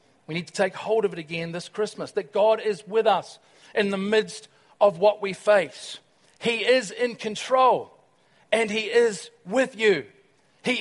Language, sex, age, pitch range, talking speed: English, male, 40-59, 175-220 Hz, 180 wpm